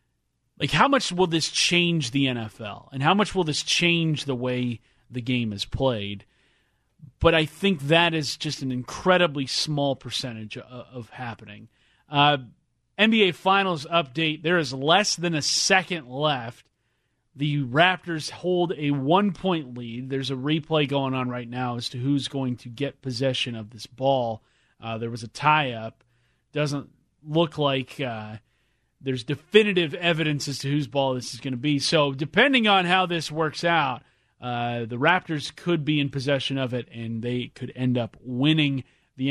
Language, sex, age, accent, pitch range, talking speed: English, male, 30-49, American, 125-170 Hz, 170 wpm